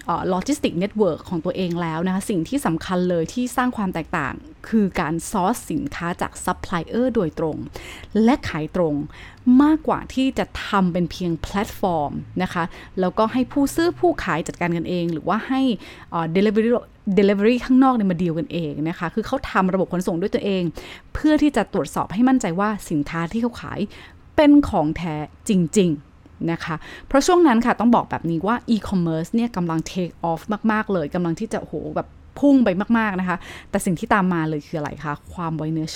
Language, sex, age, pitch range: Thai, female, 20-39, 165-230 Hz